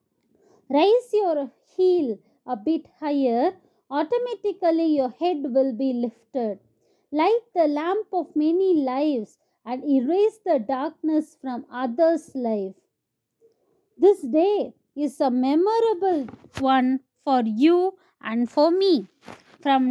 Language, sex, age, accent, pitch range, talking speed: English, female, 20-39, Indian, 265-360 Hz, 110 wpm